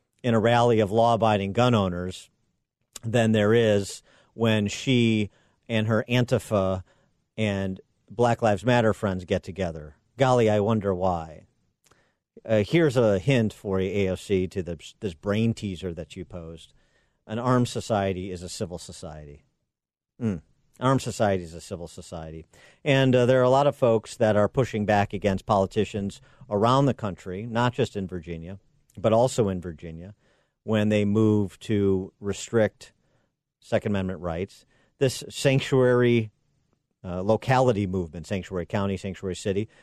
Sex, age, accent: male, 50-69, American